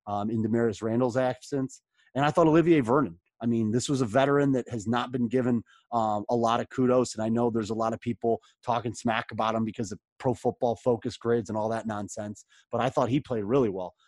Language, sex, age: English, male, 30-49